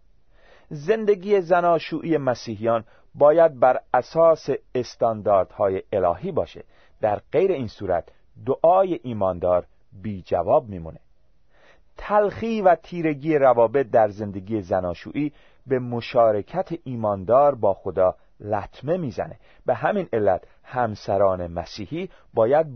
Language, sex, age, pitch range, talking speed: Persian, male, 40-59, 100-155 Hz, 100 wpm